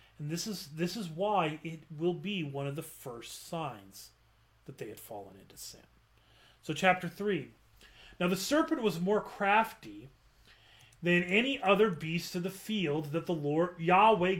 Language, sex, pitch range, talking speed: English, male, 140-195 Hz, 165 wpm